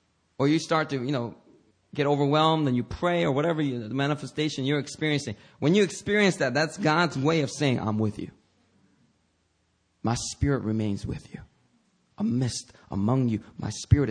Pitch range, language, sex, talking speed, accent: 110-160 Hz, English, male, 175 wpm, American